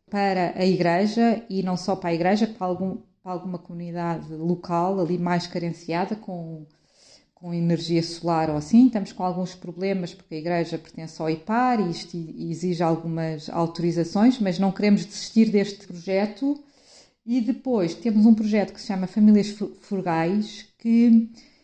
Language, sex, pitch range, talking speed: Portuguese, female, 180-215 Hz, 150 wpm